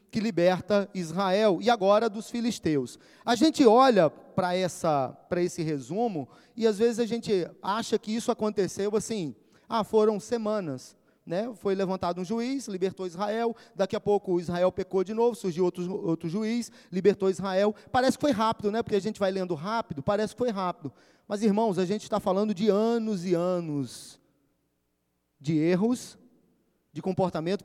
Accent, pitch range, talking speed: Brazilian, 175-220 Hz, 165 wpm